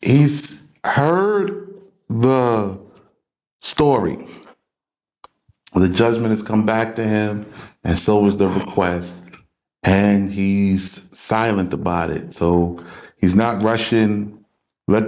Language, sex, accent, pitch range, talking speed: English, male, American, 95-125 Hz, 105 wpm